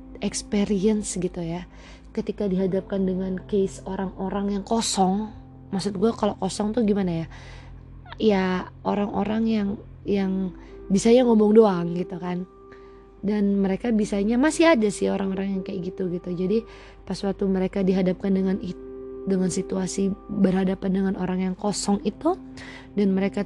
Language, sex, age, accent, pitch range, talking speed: Indonesian, female, 20-39, native, 190-220 Hz, 135 wpm